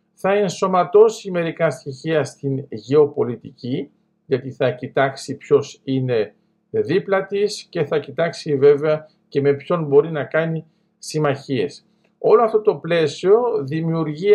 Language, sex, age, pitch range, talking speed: Greek, male, 50-69, 140-200 Hz, 120 wpm